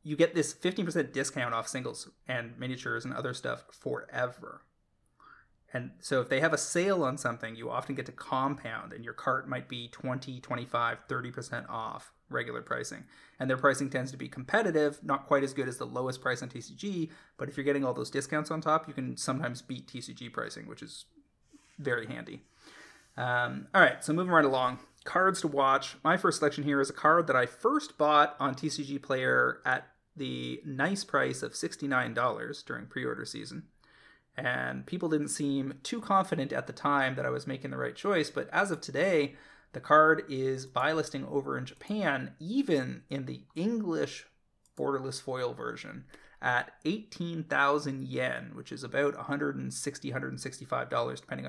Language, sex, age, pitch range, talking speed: English, male, 20-39, 130-155 Hz, 175 wpm